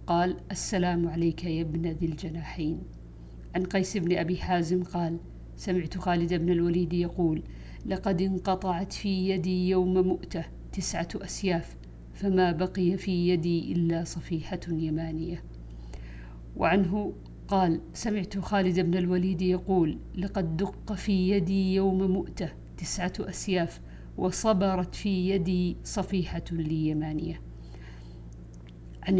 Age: 50-69